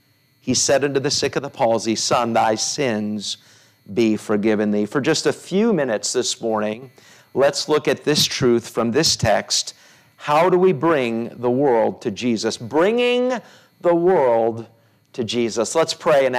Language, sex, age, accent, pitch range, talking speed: English, male, 50-69, American, 125-175 Hz, 165 wpm